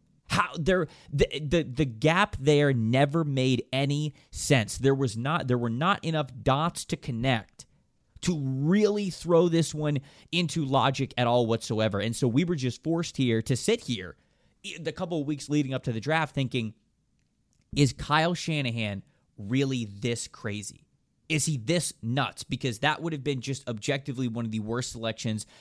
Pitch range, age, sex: 115-155 Hz, 30-49, male